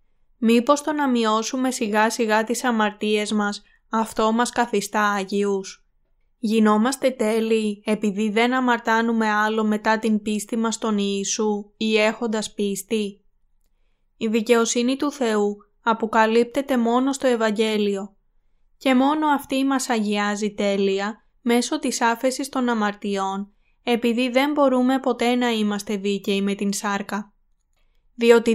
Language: Greek